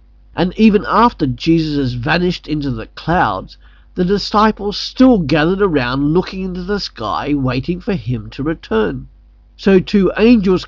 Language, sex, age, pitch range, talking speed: English, male, 50-69, 120-185 Hz, 145 wpm